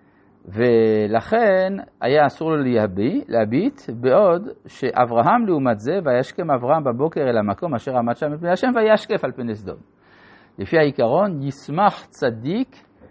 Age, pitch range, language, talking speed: 50-69, 115-185 Hz, Hebrew, 125 wpm